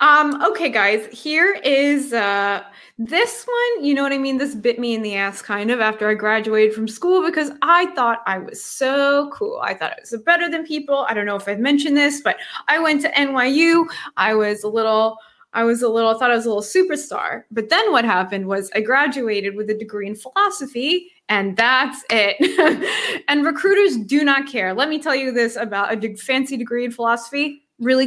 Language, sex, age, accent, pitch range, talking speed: English, female, 20-39, American, 220-295 Hz, 210 wpm